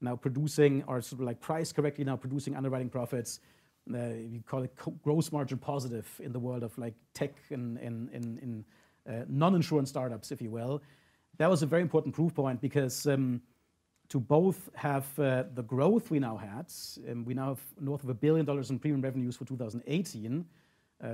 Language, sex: English, male